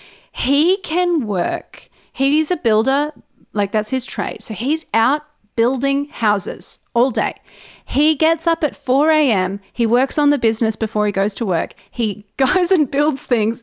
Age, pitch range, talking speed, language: 30-49, 220-285 Hz, 165 wpm, English